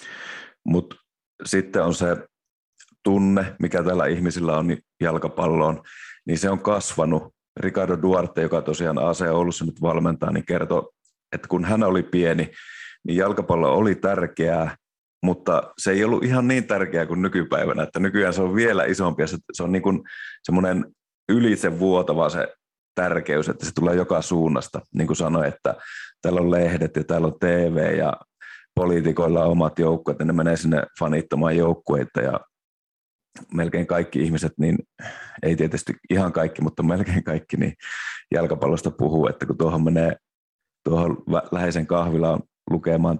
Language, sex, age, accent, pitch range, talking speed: Finnish, male, 30-49, native, 80-90 Hz, 145 wpm